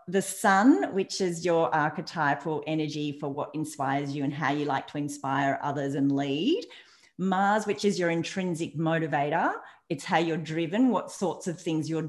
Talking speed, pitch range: 175 wpm, 150-190 Hz